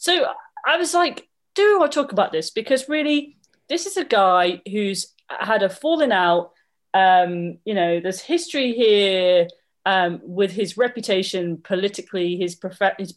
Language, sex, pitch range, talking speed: English, female, 180-255 Hz, 150 wpm